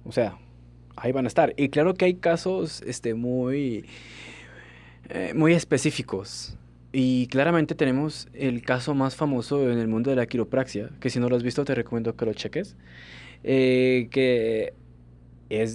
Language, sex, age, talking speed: Spanish, male, 20-39, 165 wpm